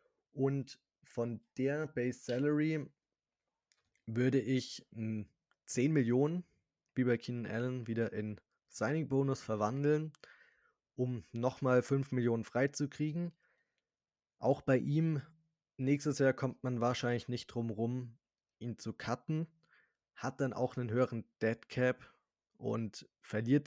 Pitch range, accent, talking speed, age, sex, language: 110-130 Hz, German, 115 wpm, 20-39, male, German